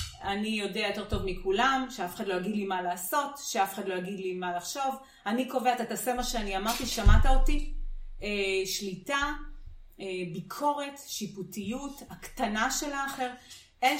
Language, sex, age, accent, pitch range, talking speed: Hebrew, female, 30-49, native, 185-245 Hz, 165 wpm